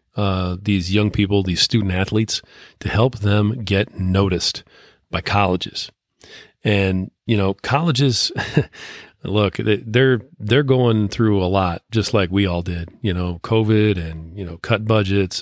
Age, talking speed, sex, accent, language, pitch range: 40-59, 150 wpm, male, American, English, 95-115 Hz